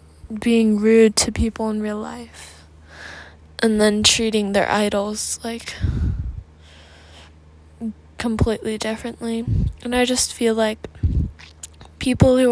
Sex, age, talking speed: female, 10-29, 105 wpm